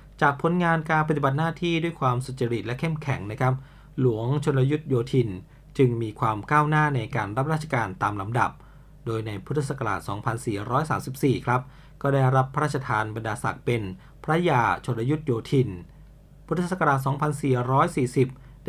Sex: male